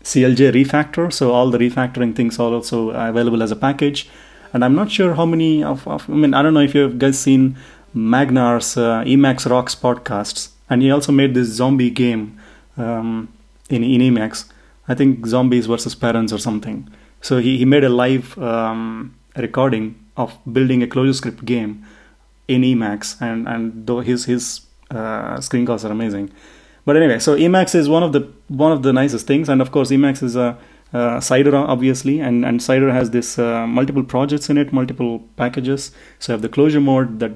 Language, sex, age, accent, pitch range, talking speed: English, male, 30-49, Indian, 115-135 Hz, 195 wpm